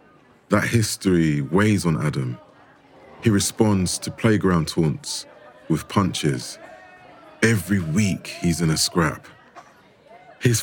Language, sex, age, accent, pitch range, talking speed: English, male, 30-49, British, 85-110 Hz, 105 wpm